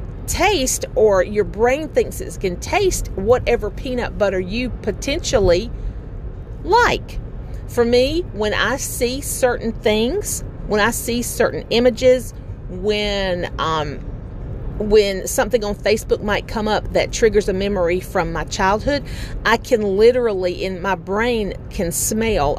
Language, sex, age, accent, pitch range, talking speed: English, female, 40-59, American, 170-250 Hz, 135 wpm